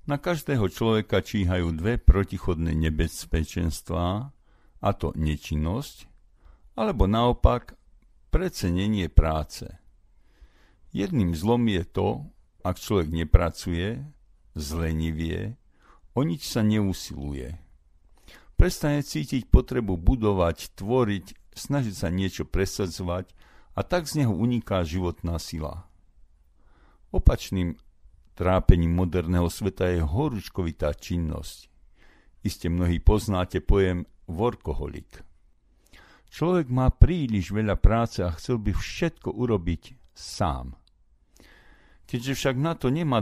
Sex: male